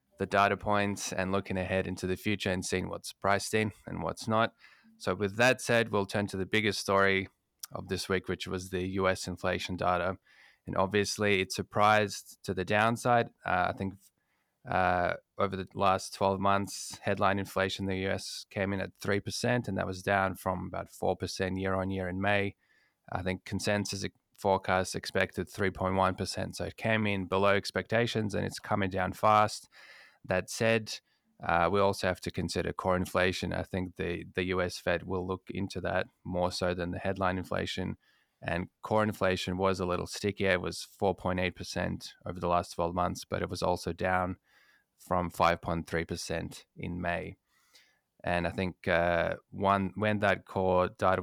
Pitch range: 90-100 Hz